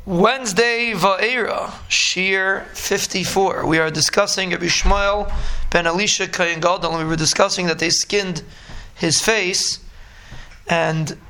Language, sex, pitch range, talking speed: English, male, 165-195 Hz, 120 wpm